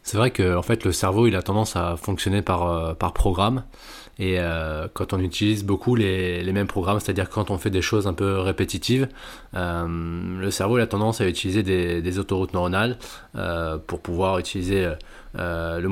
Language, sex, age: French, male, 20-39